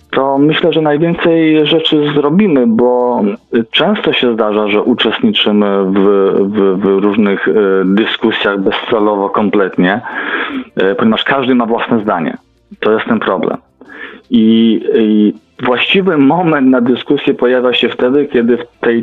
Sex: male